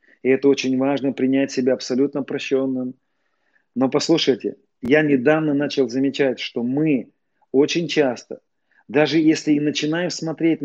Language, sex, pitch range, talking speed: Russian, male, 125-155 Hz, 130 wpm